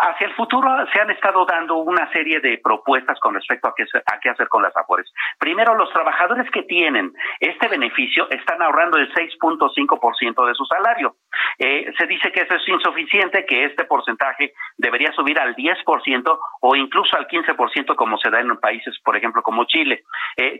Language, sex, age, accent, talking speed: Spanish, male, 50-69, Mexican, 200 wpm